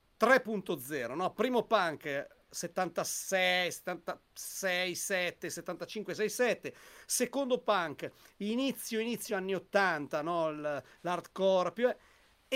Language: Italian